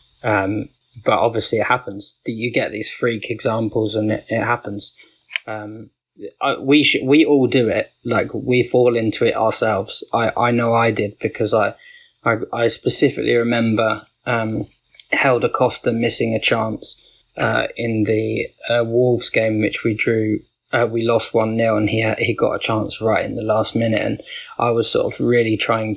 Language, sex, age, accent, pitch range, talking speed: English, male, 20-39, British, 110-120 Hz, 185 wpm